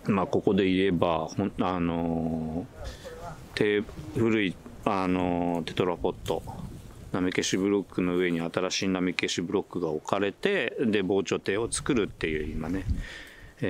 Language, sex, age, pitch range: Japanese, male, 40-59, 85-105 Hz